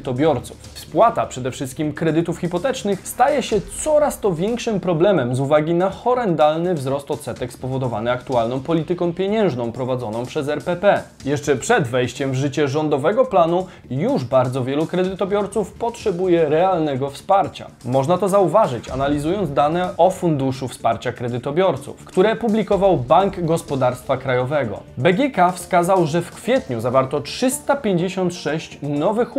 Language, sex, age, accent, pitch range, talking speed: Polish, male, 20-39, native, 135-185 Hz, 125 wpm